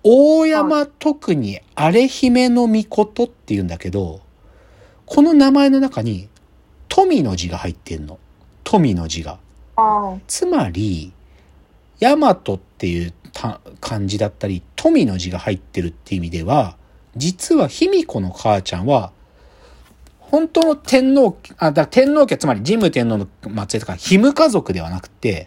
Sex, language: male, Japanese